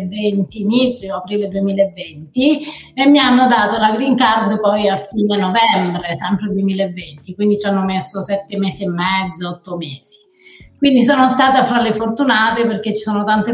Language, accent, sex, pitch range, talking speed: Italian, native, female, 195-250 Hz, 165 wpm